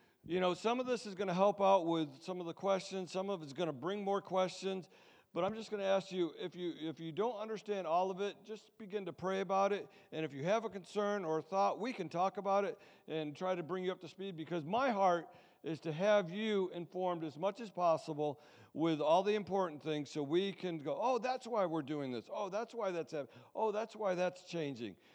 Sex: male